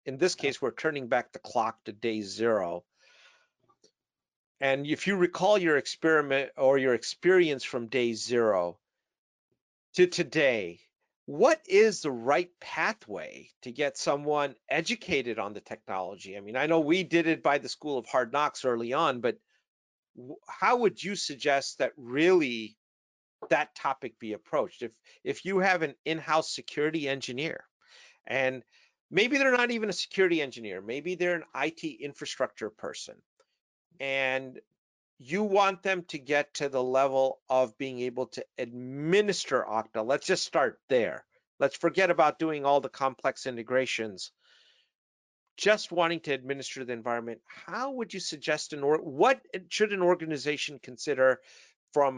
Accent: American